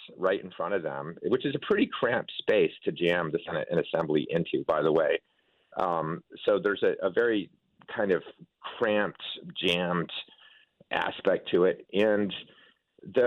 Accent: American